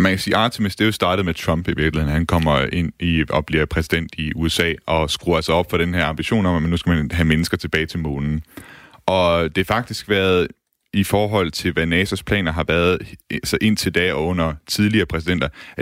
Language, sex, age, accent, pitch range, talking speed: Danish, male, 30-49, native, 80-100 Hz, 225 wpm